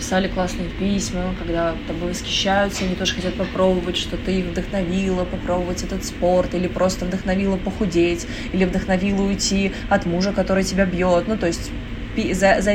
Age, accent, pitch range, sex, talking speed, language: 20-39, native, 180-215 Hz, female, 160 wpm, Russian